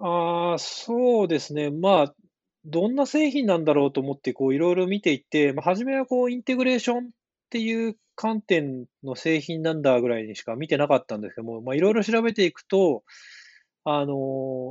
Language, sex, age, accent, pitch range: Japanese, male, 20-39, native, 135-215 Hz